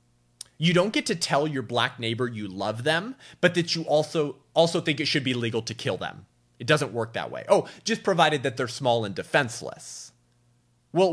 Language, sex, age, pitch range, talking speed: English, male, 30-49, 120-180 Hz, 205 wpm